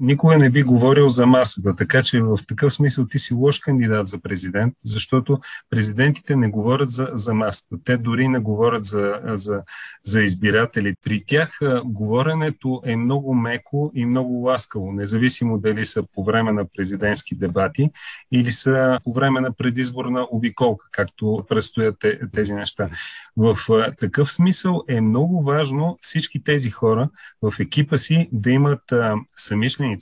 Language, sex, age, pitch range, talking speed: Bulgarian, male, 40-59, 110-135 Hz, 155 wpm